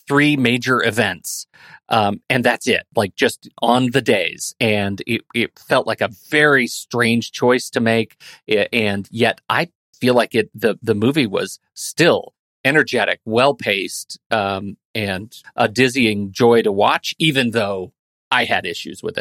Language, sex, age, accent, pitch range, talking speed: English, male, 40-59, American, 115-165 Hz, 155 wpm